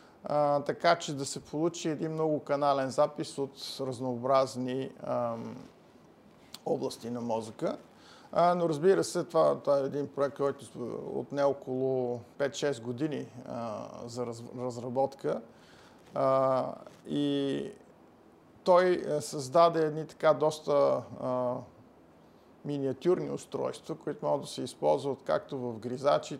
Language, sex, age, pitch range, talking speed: Bulgarian, male, 50-69, 125-155 Hz, 120 wpm